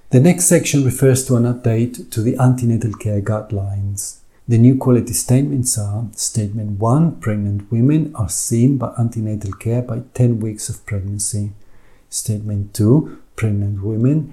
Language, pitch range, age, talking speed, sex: English, 105-125 Hz, 50-69, 145 wpm, male